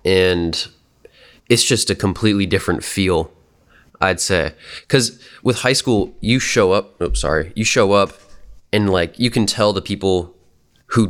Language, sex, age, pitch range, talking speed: English, male, 20-39, 85-100 Hz, 155 wpm